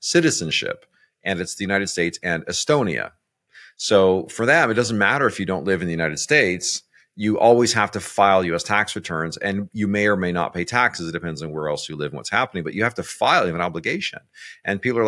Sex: male